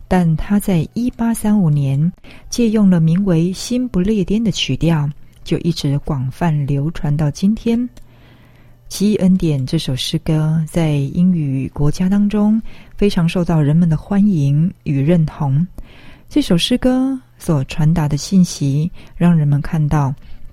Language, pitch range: Chinese, 145-195 Hz